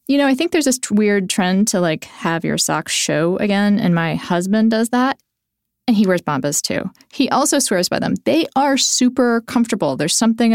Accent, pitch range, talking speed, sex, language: American, 175-240 Hz, 205 wpm, female, English